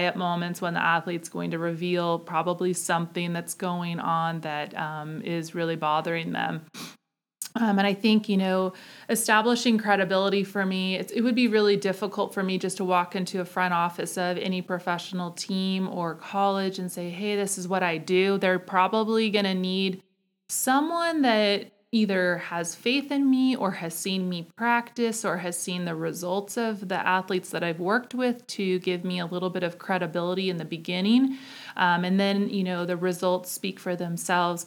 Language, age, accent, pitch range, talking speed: English, 30-49, American, 175-205 Hz, 185 wpm